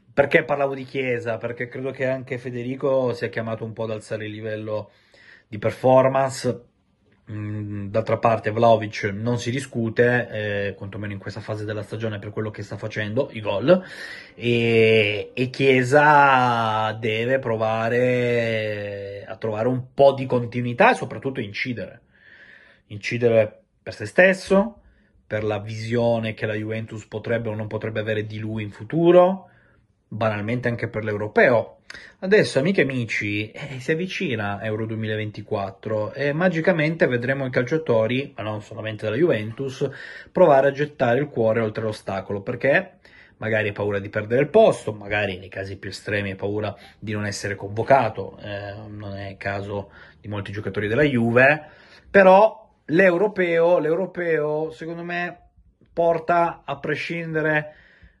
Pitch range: 105-135 Hz